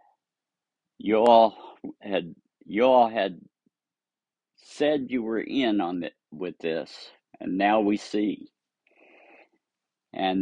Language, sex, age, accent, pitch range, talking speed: English, male, 50-69, American, 95-115 Hz, 110 wpm